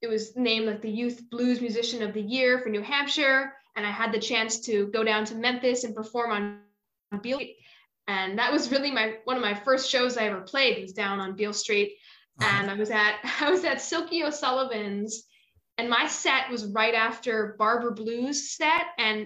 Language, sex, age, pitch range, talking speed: English, female, 10-29, 220-270 Hz, 205 wpm